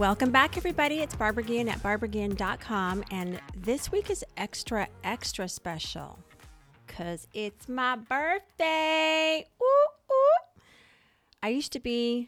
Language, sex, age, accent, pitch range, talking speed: English, female, 40-59, American, 180-245 Hz, 120 wpm